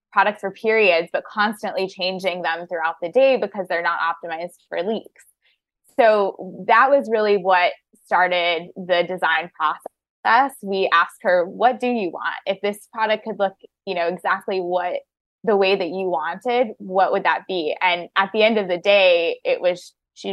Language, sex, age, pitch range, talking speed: English, female, 20-39, 175-220 Hz, 175 wpm